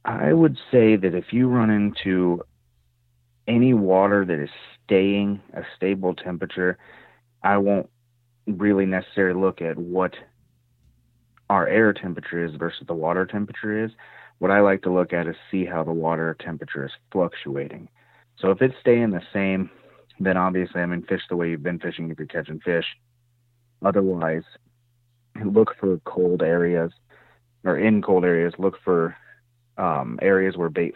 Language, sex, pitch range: English, male, 85-105 Hz